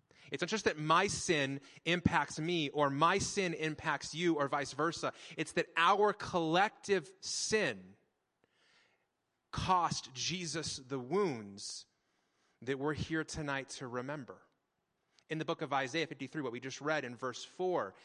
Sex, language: male, English